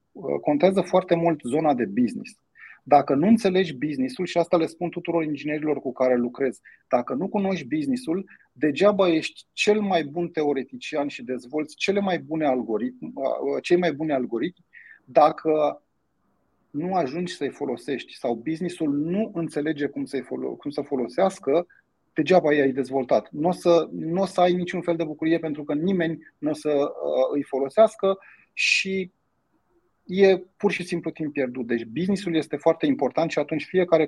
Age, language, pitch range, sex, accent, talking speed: 30-49, Romanian, 145-175 Hz, male, native, 155 wpm